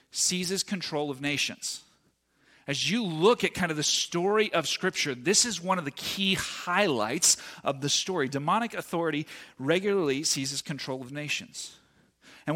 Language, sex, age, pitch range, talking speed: English, male, 40-59, 140-195 Hz, 155 wpm